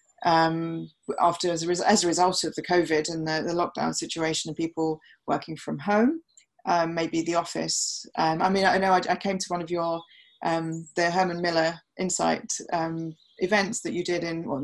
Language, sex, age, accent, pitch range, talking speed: English, female, 20-39, British, 160-195 Hz, 205 wpm